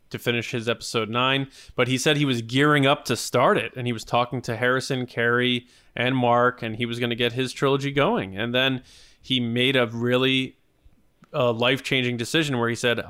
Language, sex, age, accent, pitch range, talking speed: English, male, 20-39, American, 115-135 Hz, 205 wpm